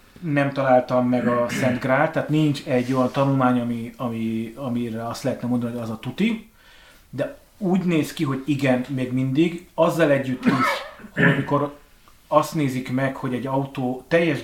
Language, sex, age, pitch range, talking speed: Hungarian, male, 30-49, 125-155 Hz, 170 wpm